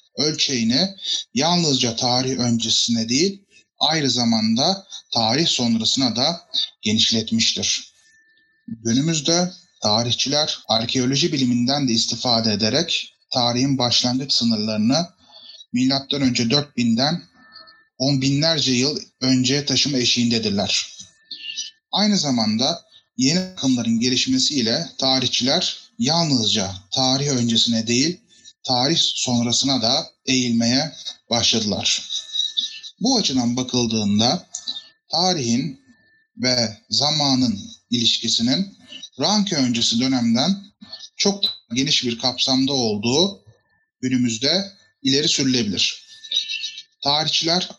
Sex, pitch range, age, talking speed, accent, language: male, 120-195 Hz, 30-49, 80 wpm, native, Turkish